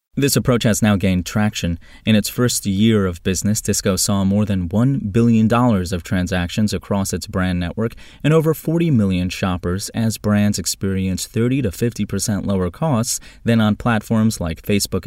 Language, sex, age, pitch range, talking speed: English, male, 30-49, 95-115 Hz, 165 wpm